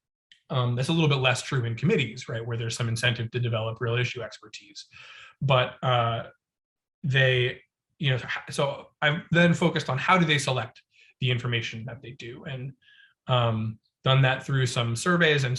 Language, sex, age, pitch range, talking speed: English, male, 20-39, 120-140 Hz, 175 wpm